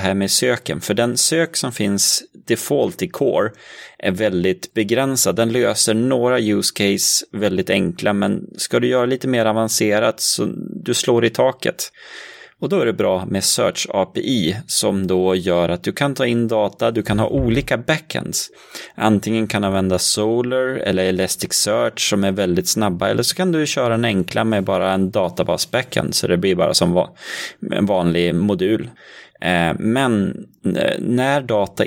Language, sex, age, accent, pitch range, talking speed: Swedish, male, 30-49, native, 90-115 Hz, 165 wpm